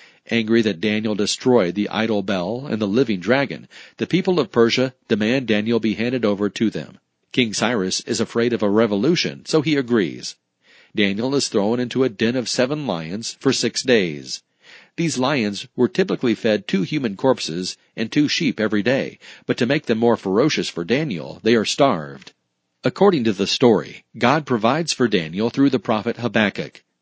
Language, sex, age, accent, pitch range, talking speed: English, male, 40-59, American, 105-130 Hz, 175 wpm